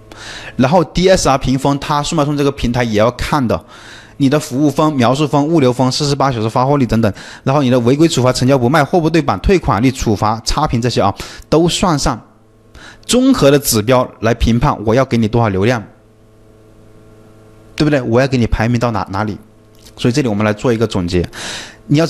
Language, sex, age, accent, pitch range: Chinese, male, 20-39, native, 110-150 Hz